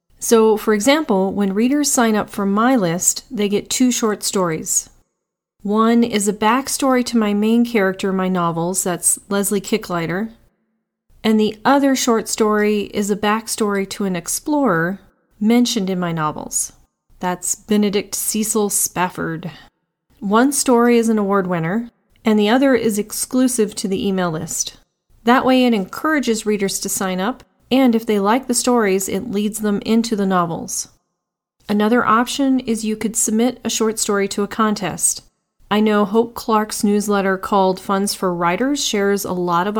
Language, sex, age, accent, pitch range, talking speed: English, female, 40-59, American, 190-230 Hz, 165 wpm